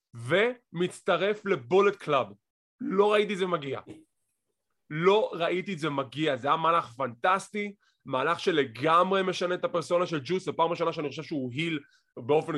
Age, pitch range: 20-39, 150-195 Hz